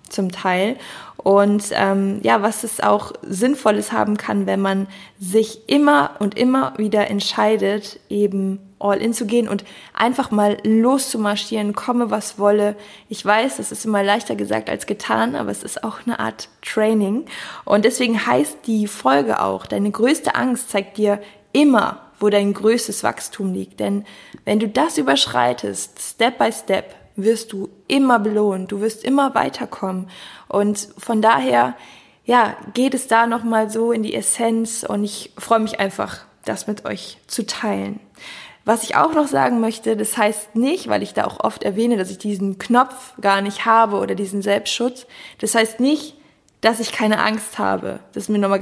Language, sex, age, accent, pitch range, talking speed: German, female, 20-39, German, 195-230 Hz, 170 wpm